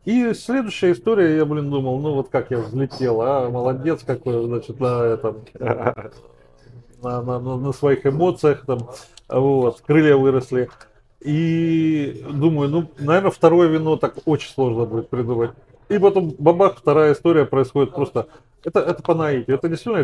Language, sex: Russian, male